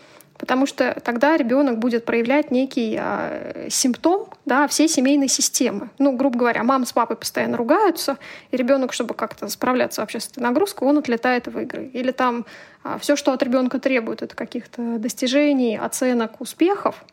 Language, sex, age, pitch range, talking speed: Russian, female, 20-39, 240-290 Hz, 155 wpm